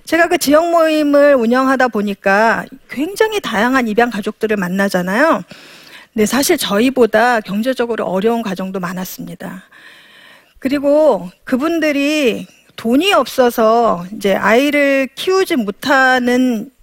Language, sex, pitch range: Korean, female, 215-300 Hz